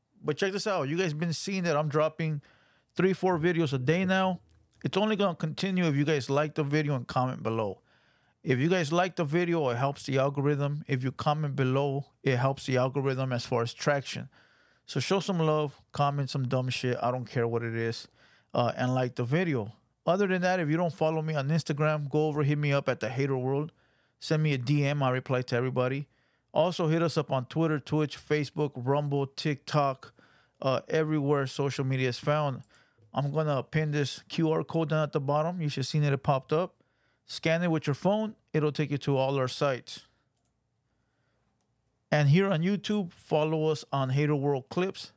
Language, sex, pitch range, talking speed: English, male, 130-160 Hz, 205 wpm